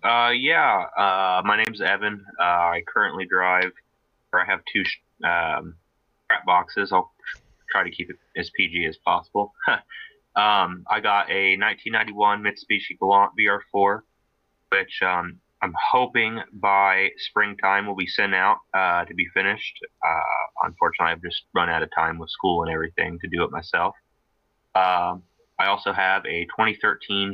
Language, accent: English, American